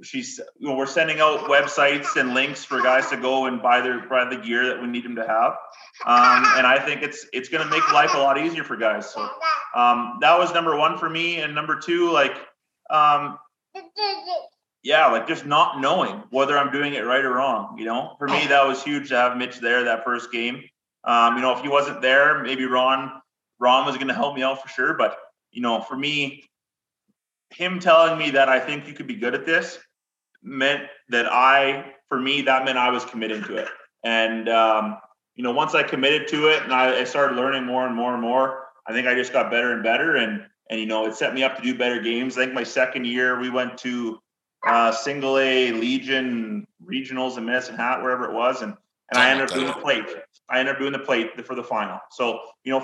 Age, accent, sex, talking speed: 30-49, American, male, 235 wpm